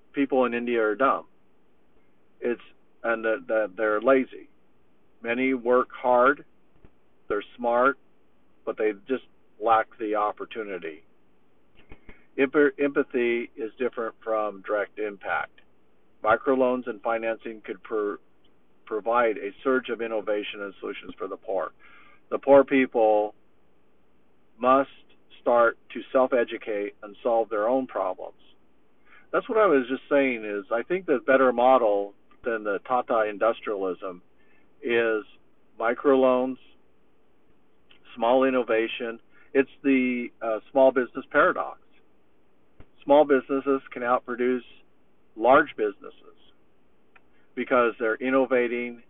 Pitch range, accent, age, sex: 110-130 Hz, American, 50-69, male